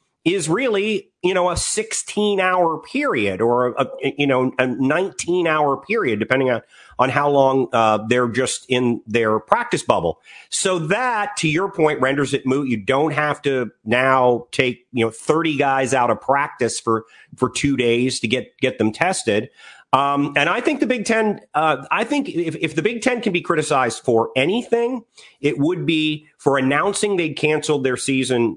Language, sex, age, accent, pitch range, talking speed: English, male, 40-59, American, 130-175 Hz, 185 wpm